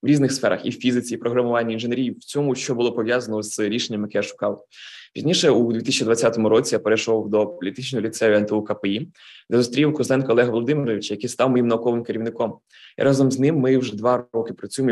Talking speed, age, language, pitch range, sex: 210 wpm, 20-39, Ukrainian, 110-130 Hz, male